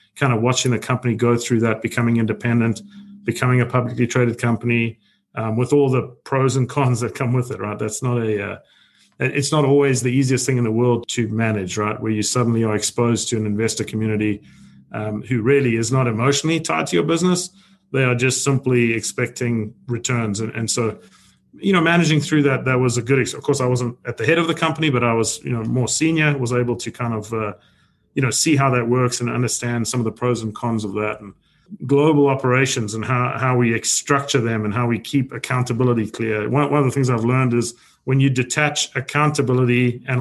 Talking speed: 220 wpm